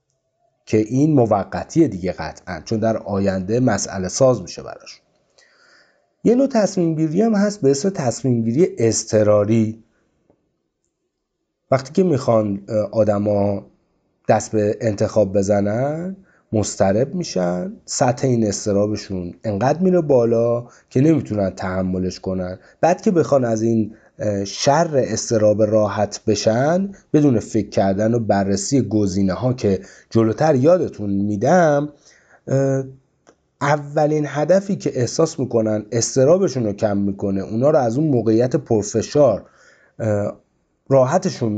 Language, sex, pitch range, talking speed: Persian, male, 105-150 Hz, 115 wpm